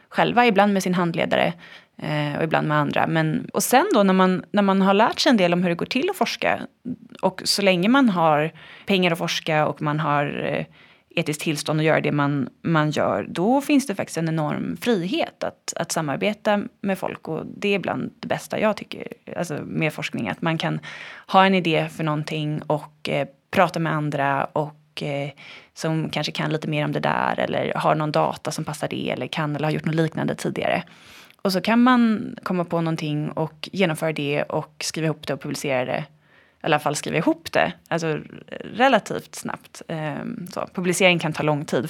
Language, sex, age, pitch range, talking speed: Swedish, female, 20-39, 150-205 Hz, 195 wpm